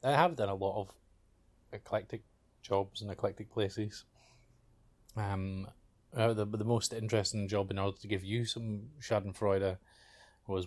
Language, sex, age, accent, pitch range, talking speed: English, male, 20-39, British, 95-105 Hz, 140 wpm